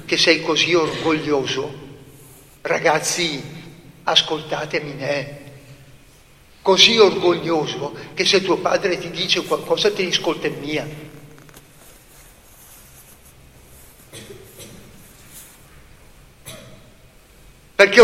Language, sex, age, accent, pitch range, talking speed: Italian, male, 60-79, native, 150-195 Hz, 75 wpm